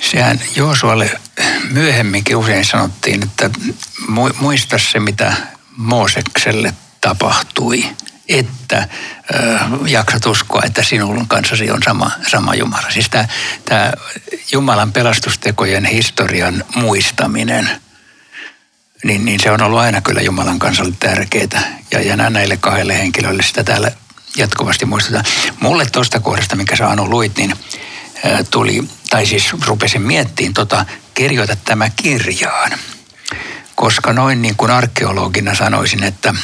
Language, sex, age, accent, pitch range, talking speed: Finnish, male, 60-79, native, 105-125 Hz, 115 wpm